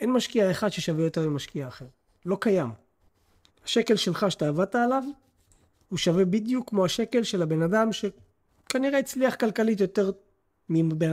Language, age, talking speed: Hebrew, 30-49, 145 wpm